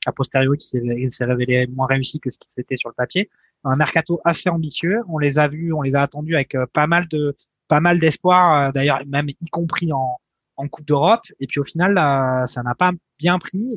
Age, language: 20-39, French